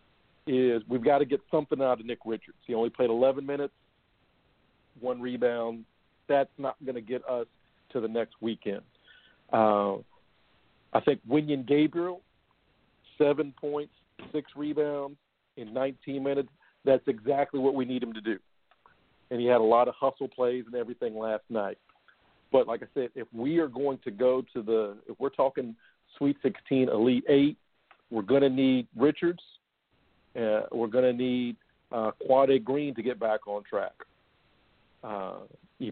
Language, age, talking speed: English, 50-69, 165 wpm